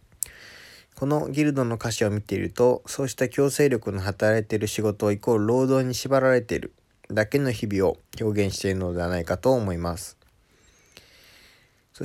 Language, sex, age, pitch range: Japanese, male, 20-39, 100-130 Hz